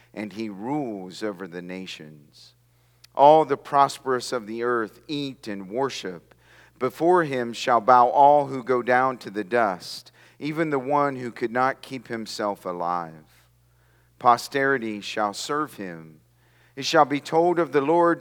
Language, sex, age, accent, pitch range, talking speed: English, male, 40-59, American, 110-165 Hz, 150 wpm